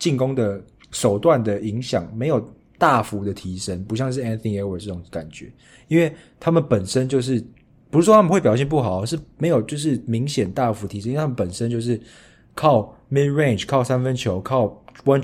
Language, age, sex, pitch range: Chinese, 20-39, male, 105-140 Hz